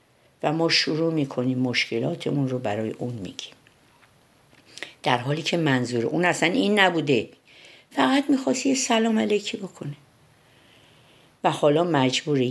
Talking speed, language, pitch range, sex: 120 wpm, Persian, 130-170 Hz, female